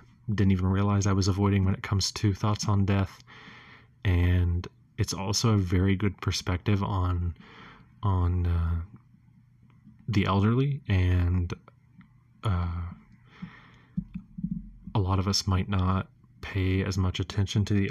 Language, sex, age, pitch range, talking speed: English, male, 20-39, 90-105 Hz, 130 wpm